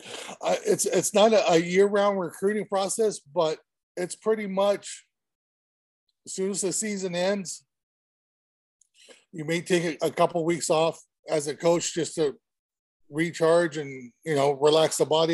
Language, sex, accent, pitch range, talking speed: English, male, American, 145-175 Hz, 155 wpm